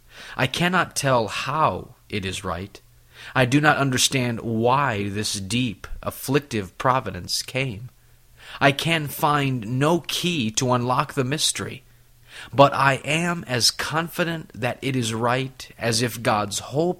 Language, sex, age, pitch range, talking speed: English, male, 30-49, 110-135 Hz, 140 wpm